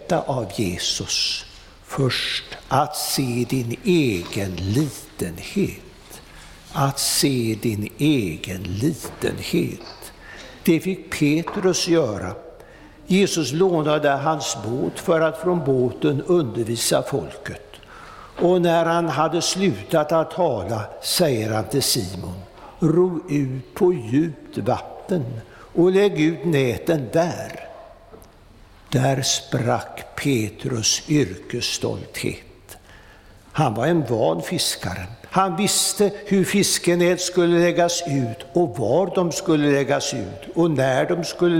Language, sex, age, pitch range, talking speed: Swedish, male, 60-79, 120-175 Hz, 105 wpm